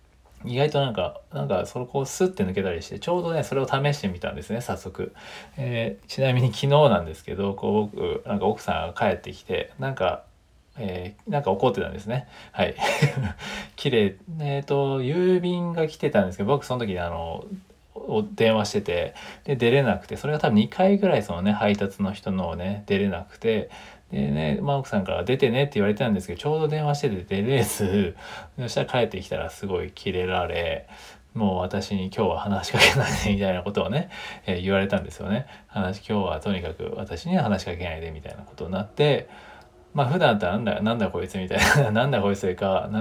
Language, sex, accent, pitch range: Japanese, male, native, 95-140 Hz